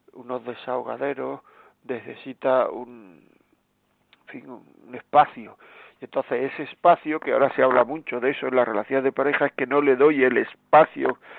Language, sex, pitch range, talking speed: Spanish, male, 130-150 Hz, 165 wpm